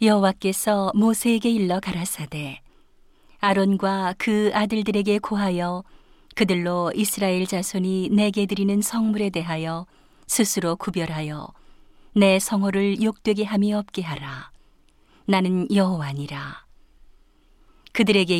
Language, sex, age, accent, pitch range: Korean, female, 40-59, native, 175-215 Hz